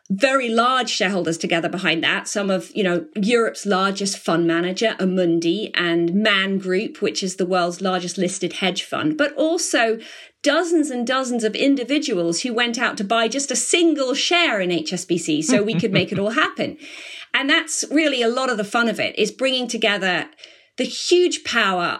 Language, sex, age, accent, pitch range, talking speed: English, female, 40-59, British, 195-280 Hz, 185 wpm